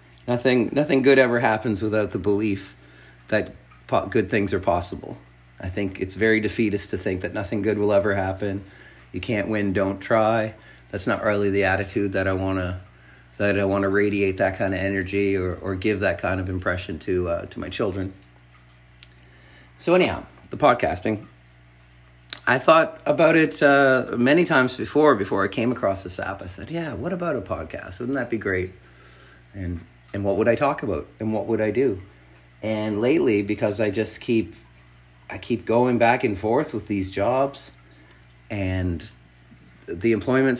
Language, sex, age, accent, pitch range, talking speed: English, male, 40-59, American, 90-115 Hz, 175 wpm